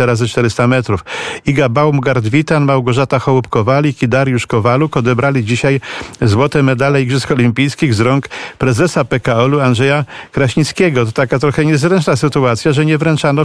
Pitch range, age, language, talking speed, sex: 125-140 Hz, 50-69, Polish, 140 wpm, male